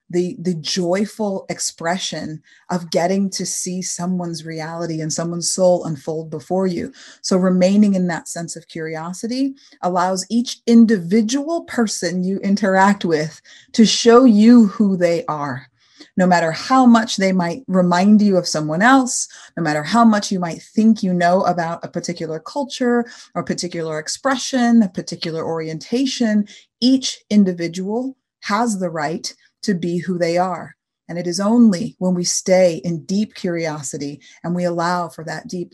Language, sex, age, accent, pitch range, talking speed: English, female, 30-49, American, 170-210 Hz, 155 wpm